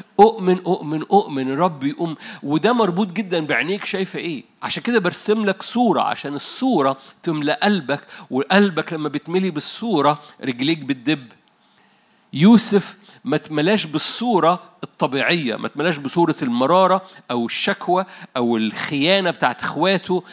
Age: 50-69